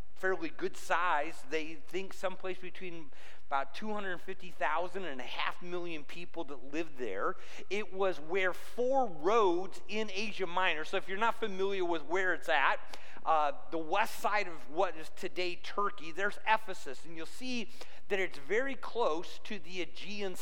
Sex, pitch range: male, 165-215 Hz